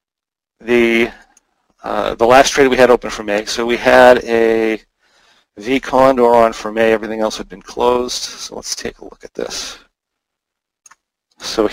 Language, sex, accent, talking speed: English, male, American, 160 wpm